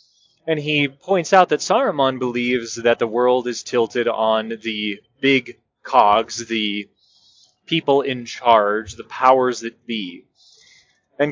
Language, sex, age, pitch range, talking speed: English, male, 20-39, 115-145 Hz, 135 wpm